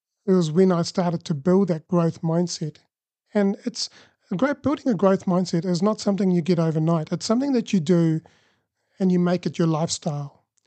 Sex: male